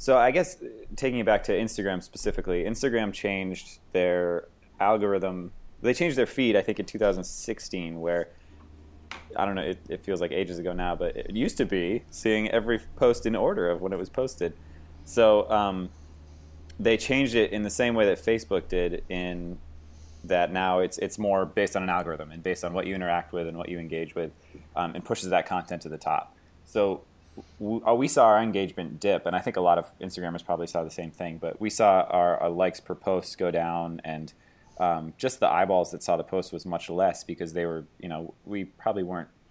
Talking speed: 210 wpm